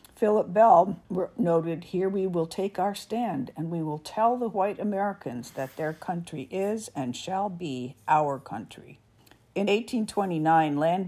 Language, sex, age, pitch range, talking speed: English, female, 50-69, 145-190 Hz, 150 wpm